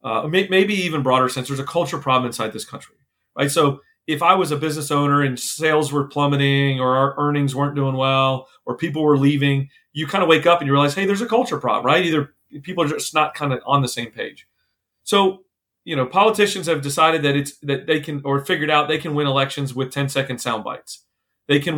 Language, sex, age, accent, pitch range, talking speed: English, male, 40-59, American, 140-165 Hz, 230 wpm